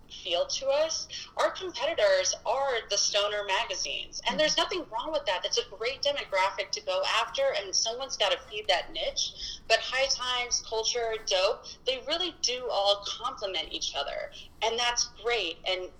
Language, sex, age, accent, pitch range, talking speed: English, female, 30-49, American, 180-265 Hz, 170 wpm